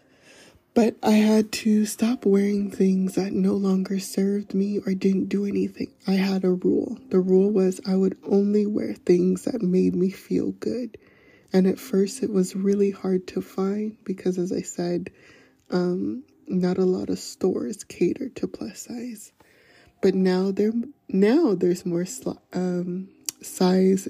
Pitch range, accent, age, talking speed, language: 185-215 Hz, American, 20-39, 160 wpm, English